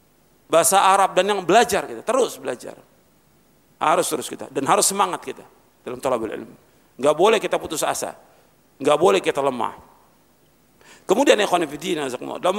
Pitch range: 170-220 Hz